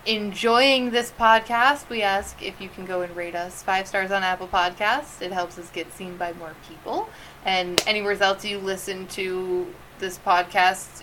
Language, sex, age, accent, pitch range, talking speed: English, female, 20-39, American, 180-210 Hz, 180 wpm